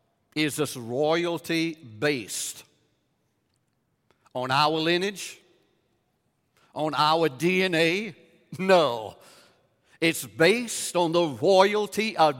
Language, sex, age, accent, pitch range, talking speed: English, male, 60-79, American, 135-175 Hz, 80 wpm